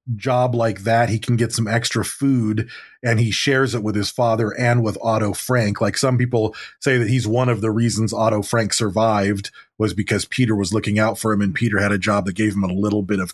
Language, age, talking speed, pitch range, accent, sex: English, 30-49, 240 wpm, 110-125 Hz, American, male